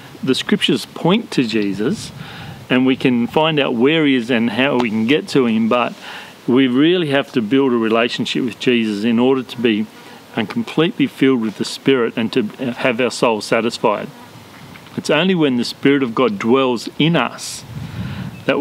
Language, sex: English, male